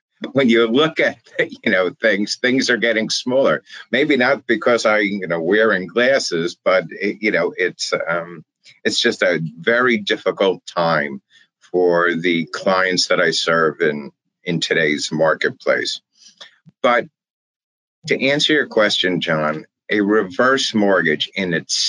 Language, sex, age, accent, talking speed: English, male, 50-69, American, 145 wpm